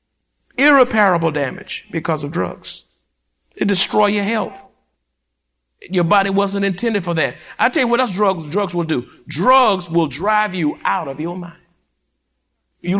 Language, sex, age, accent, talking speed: English, male, 50-69, American, 150 wpm